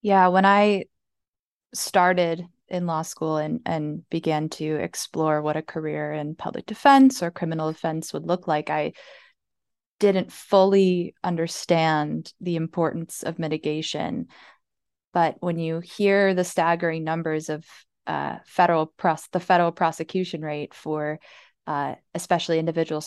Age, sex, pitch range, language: 20-39, female, 155-180 Hz, English